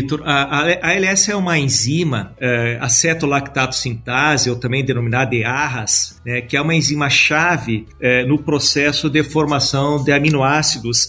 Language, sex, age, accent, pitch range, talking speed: Portuguese, male, 40-59, Brazilian, 130-155 Hz, 145 wpm